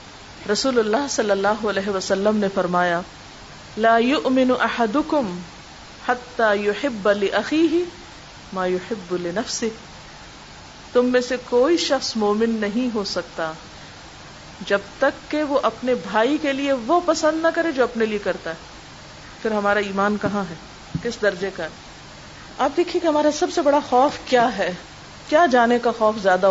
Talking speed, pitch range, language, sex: 150 wpm, 200-285 Hz, Urdu, female